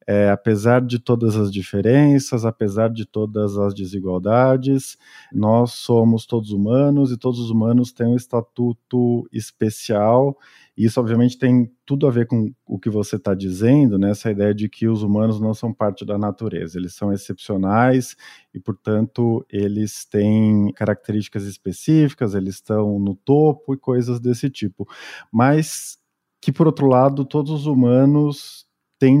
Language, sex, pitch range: Portuguese, male, 105-135 Hz